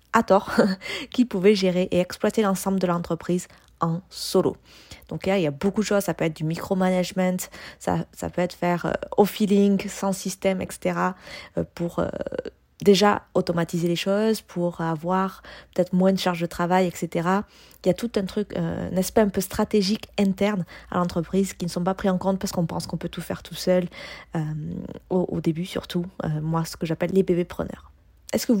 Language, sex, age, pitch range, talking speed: French, female, 20-39, 175-205 Hz, 210 wpm